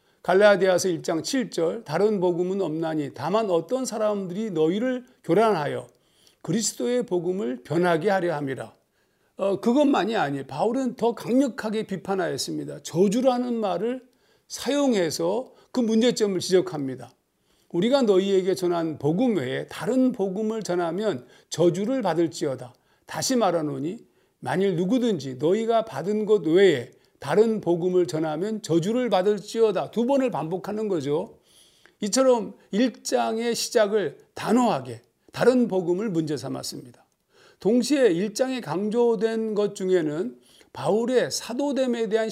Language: Korean